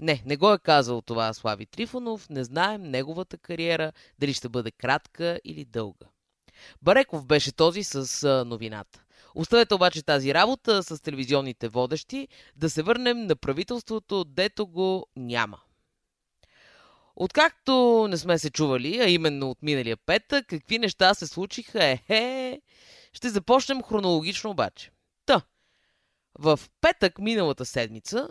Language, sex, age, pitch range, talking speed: Bulgarian, female, 20-39, 140-220 Hz, 130 wpm